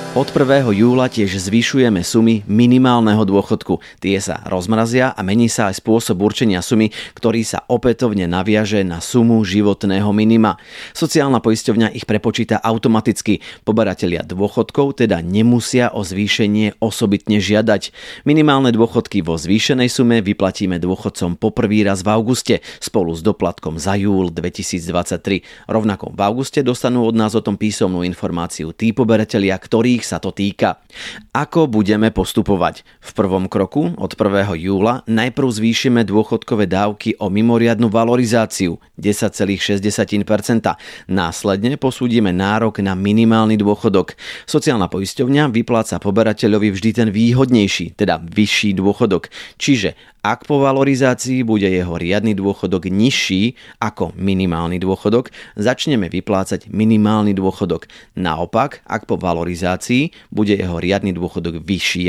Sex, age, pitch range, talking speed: male, 30-49, 95-115 Hz, 125 wpm